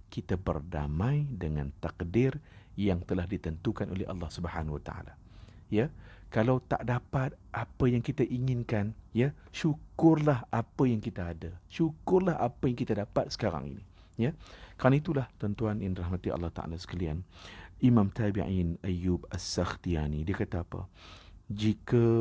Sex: male